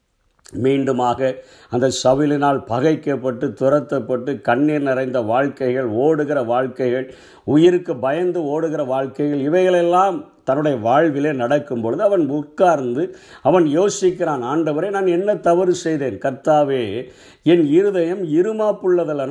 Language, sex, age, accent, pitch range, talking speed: Tamil, male, 50-69, native, 145-180 Hz, 100 wpm